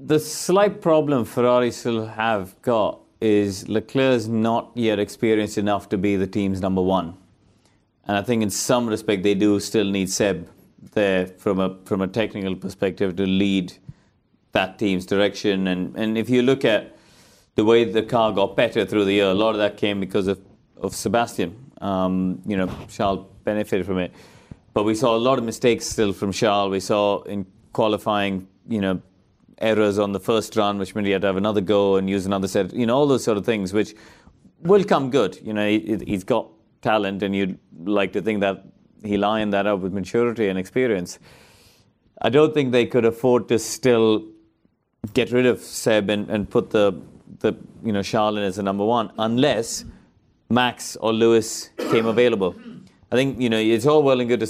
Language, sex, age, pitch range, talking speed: English, male, 30-49, 100-115 Hz, 195 wpm